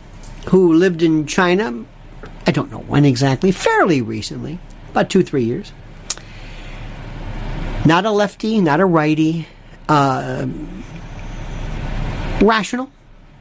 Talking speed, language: 105 wpm, English